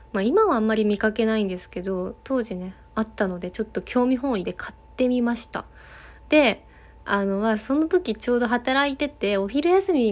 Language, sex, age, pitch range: Japanese, female, 20-39, 200-260 Hz